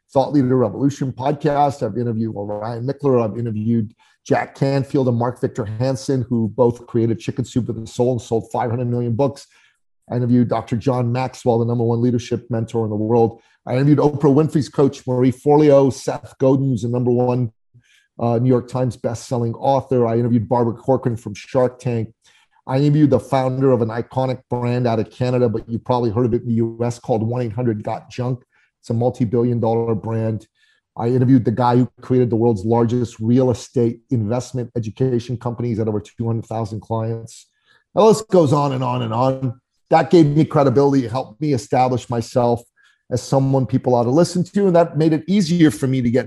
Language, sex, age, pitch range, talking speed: English, male, 40-59, 120-140 Hz, 190 wpm